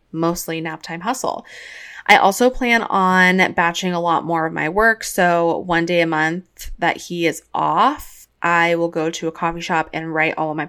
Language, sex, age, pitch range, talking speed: English, female, 20-39, 160-200 Hz, 200 wpm